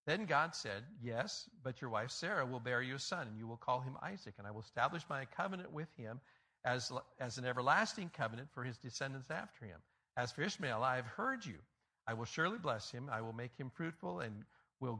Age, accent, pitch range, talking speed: 50-69, American, 115-145 Hz, 225 wpm